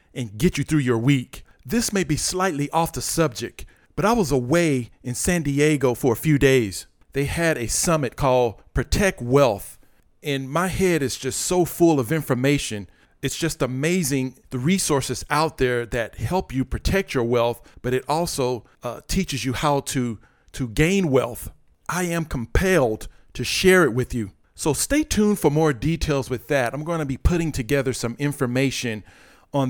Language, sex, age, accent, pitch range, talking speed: English, male, 50-69, American, 125-155 Hz, 180 wpm